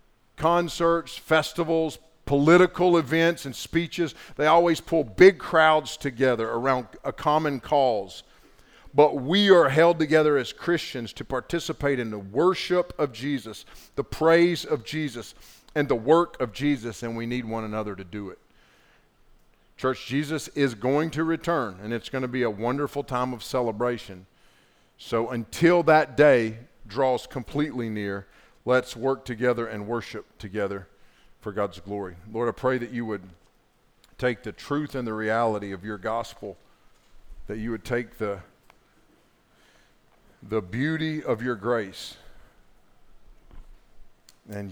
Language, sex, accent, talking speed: English, male, American, 140 wpm